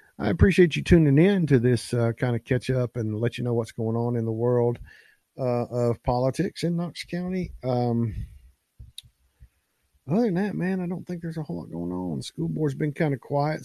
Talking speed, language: 215 wpm, English